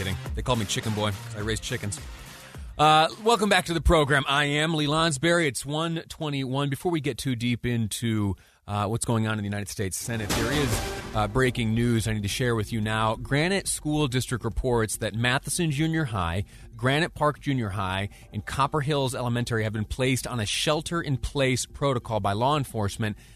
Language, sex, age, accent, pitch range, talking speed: English, male, 30-49, American, 105-135 Hz, 190 wpm